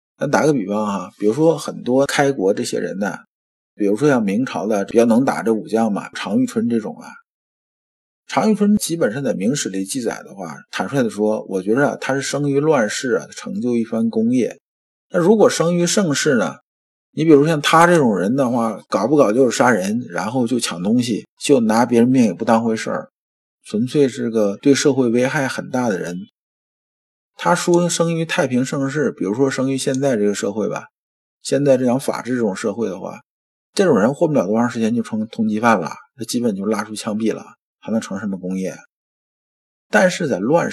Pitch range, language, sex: 110-175 Hz, Chinese, male